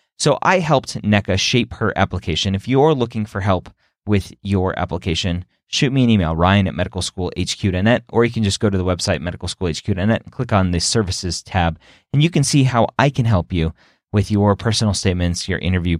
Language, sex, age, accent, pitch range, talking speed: English, male, 30-49, American, 90-115 Hz, 195 wpm